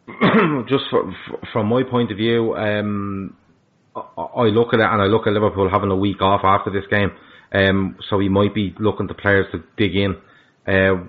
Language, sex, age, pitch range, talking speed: English, male, 30-49, 95-105 Hz, 205 wpm